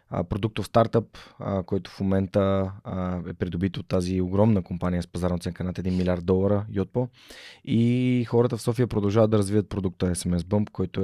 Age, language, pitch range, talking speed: 20-39, Bulgarian, 90-105 Hz, 165 wpm